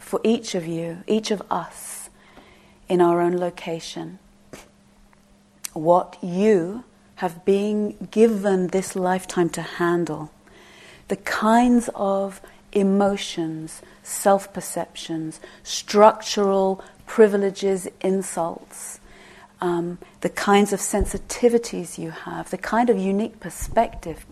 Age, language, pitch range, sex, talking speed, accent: 40-59, English, 175-205 Hz, female, 100 wpm, British